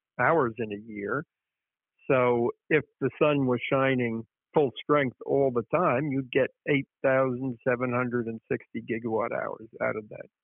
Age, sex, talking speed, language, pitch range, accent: 60-79, male, 160 wpm, English, 120-155 Hz, American